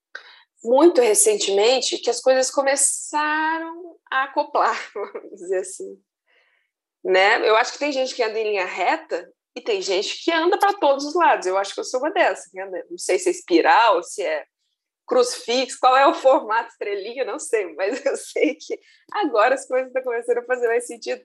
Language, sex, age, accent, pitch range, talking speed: Portuguese, female, 20-39, Brazilian, 245-390 Hz, 190 wpm